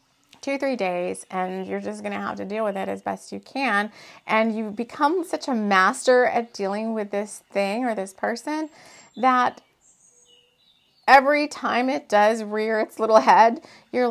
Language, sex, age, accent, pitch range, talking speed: English, female, 30-49, American, 185-245 Hz, 175 wpm